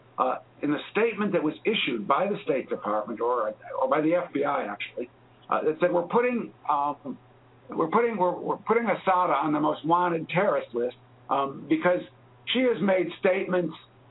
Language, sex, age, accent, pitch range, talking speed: English, male, 60-79, American, 135-185 Hz, 175 wpm